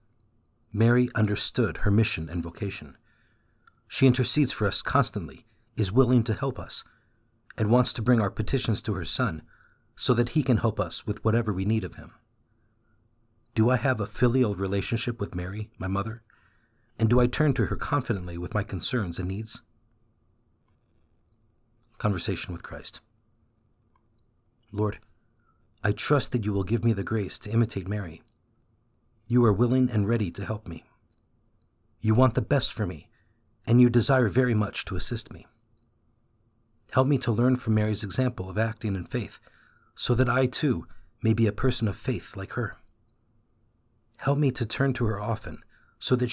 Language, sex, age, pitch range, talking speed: English, male, 50-69, 105-120 Hz, 165 wpm